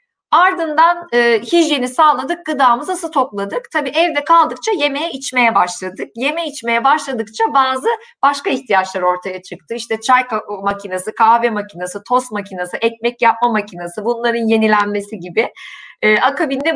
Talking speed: 125 wpm